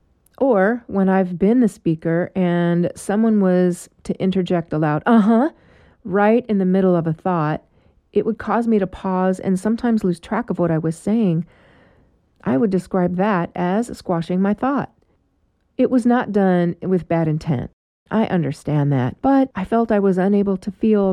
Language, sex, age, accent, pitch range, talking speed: English, female, 40-59, American, 170-210 Hz, 175 wpm